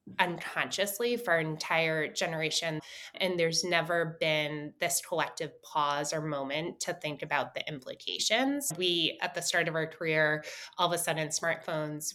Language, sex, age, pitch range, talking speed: English, female, 20-39, 160-195 Hz, 155 wpm